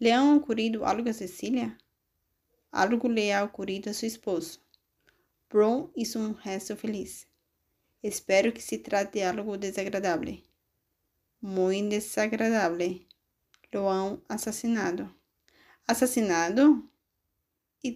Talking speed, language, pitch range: 100 wpm, English, 190-230 Hz